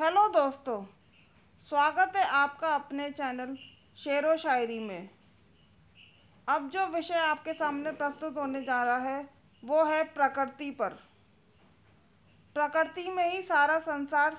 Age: 40-59